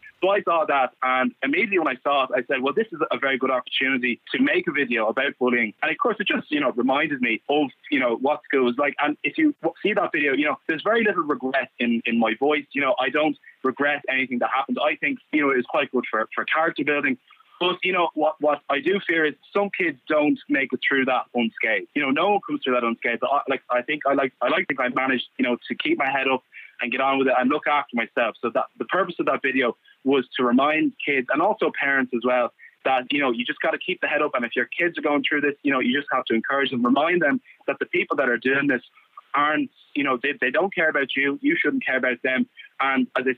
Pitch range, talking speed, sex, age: 130-210 Hz, 275 wpm, male, 20-39